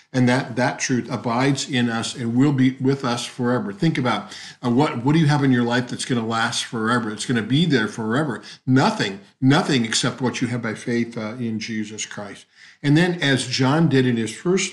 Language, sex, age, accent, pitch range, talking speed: English, male, 50-69, American, 115-135 Hz, 225 wpm